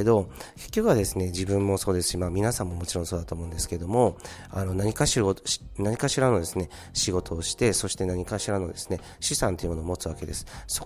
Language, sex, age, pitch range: Japanese, male, 40-59, 85-105 Hz